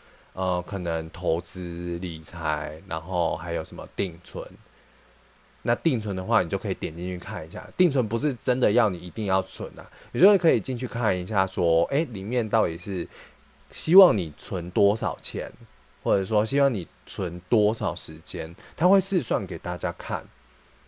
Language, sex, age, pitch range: Chinese, male, 20-39, 90-120 Hz